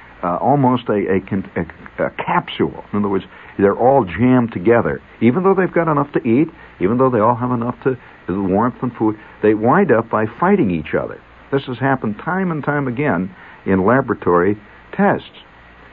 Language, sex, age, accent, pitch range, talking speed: English, male, 60-79, American, 80-125 Hz, 190 wpm